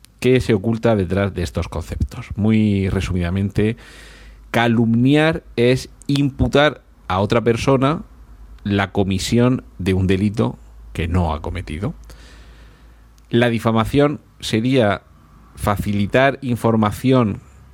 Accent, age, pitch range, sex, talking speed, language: Spanish, 40-59, 90-120 Hz, male, 100 wpm, Spanish